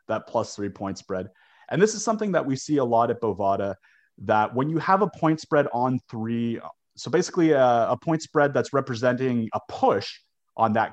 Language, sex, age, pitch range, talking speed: English, male, 30-49, 100-145 Hz, 205 wpm